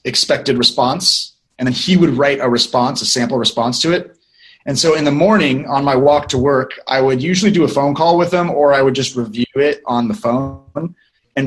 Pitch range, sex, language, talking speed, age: 120-170 Hz, male, English, 225 wpm, 30-49